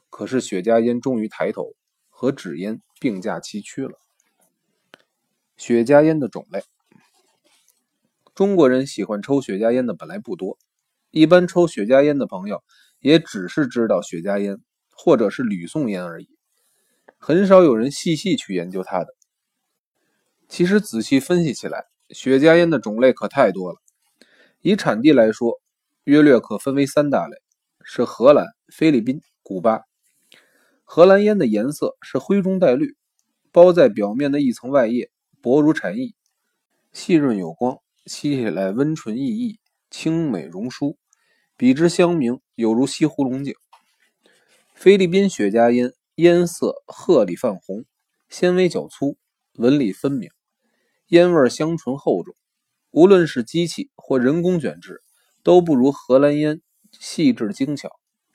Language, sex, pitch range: Chinese, male, 125-185 Hz